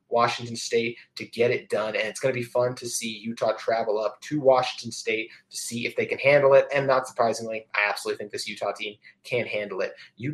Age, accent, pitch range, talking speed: 20-39, American, 115-140 Hz, 230 wpm